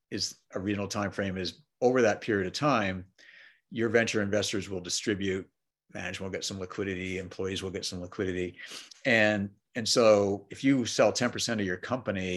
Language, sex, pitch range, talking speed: English, male, 95-110 Hz, 180 wpm